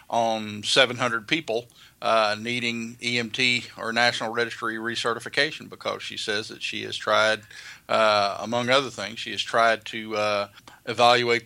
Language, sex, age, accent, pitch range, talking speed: English, male, 40-59, American, 110-130 Hz, 140 wpm